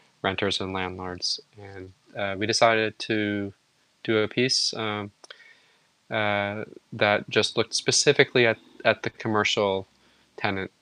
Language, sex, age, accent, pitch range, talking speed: English, male, 20-39, American, 100-120 Hz, 120 wpm